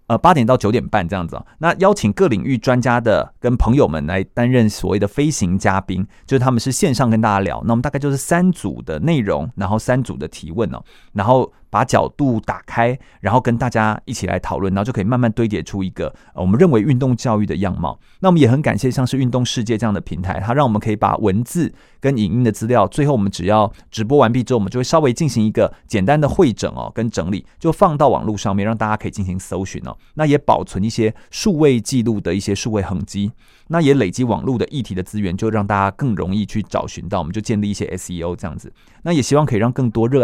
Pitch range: 100-130 Hz